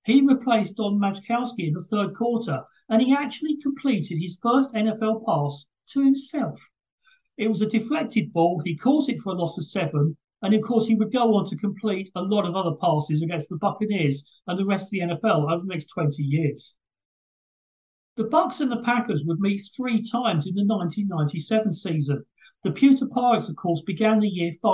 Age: 40-59